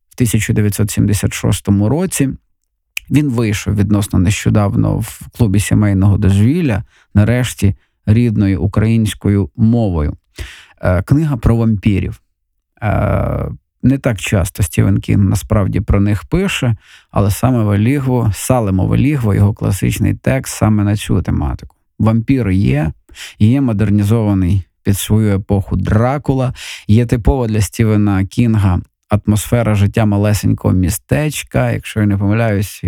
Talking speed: 110 wpm